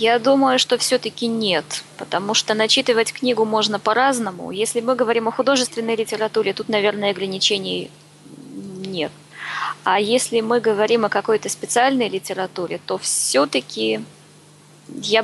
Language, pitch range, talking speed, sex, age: Russian, 190-240 Hz, 125 wpm, female, 20-39